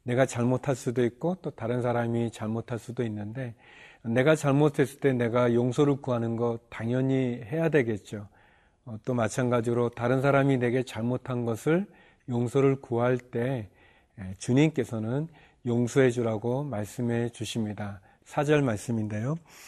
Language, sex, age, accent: Korean, male, 40-59, native